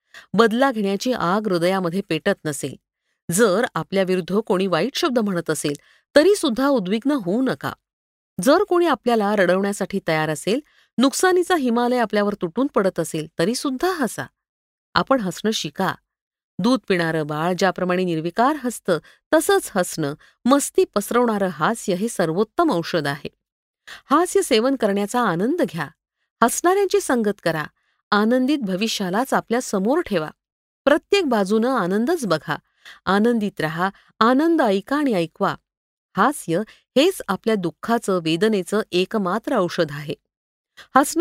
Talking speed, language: 120 wpm, Marathi